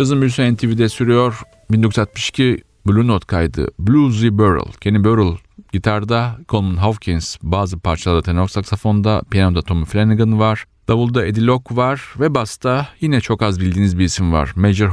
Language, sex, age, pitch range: Turkish, male, 40-59, 95-115 Hz